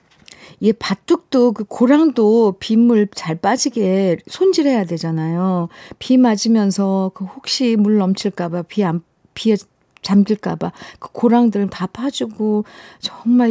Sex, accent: female, native